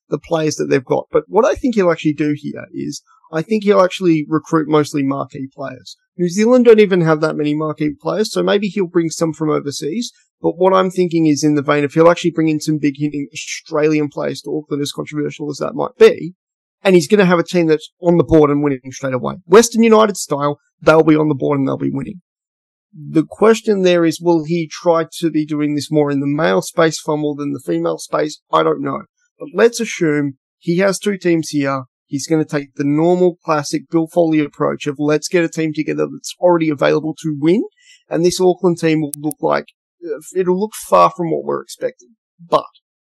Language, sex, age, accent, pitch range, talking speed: English, male, 30-49, Australian, 150-180 Hz, 220 wpm